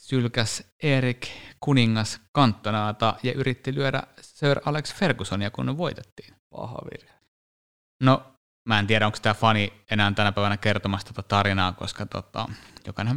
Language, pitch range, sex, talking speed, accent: Finnish, 100-130 Hz, male, 135 wpm, native